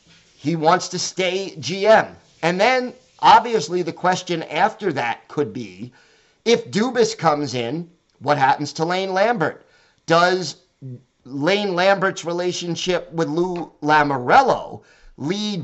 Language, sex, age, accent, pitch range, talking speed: English, male, 50-69, American, 150-190 Hz, 120 wpm